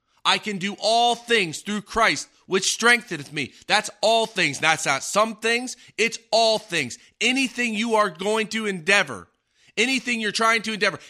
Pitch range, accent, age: 170-220 Hz, American, 30-49